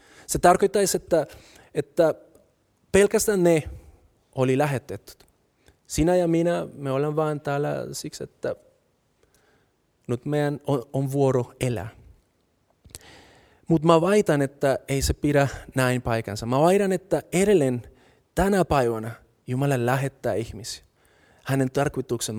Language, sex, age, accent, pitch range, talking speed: Finnish, male, 30-49, native, 130-170 Hz, 115 wpm